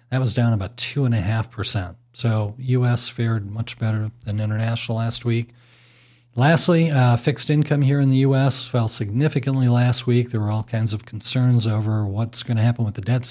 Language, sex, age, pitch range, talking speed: English, male, 40-59, 115-130 Hz, 180 wpm